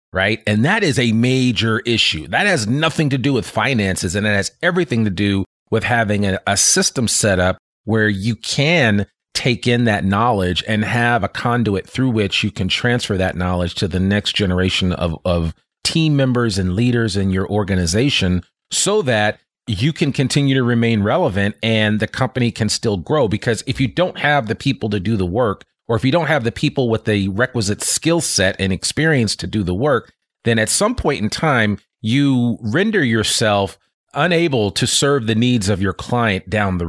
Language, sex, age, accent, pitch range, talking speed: English, male, 40-59, American, 100-130 Hz, 195 wpm